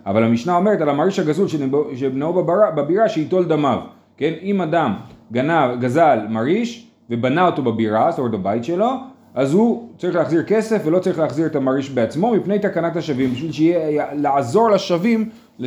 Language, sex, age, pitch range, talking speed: Hebrew, male, 30-49, 140-190 Hz, 145 wpm